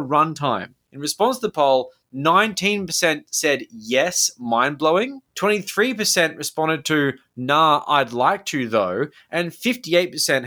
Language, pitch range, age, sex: English, 130-190 Hz, 20-39, male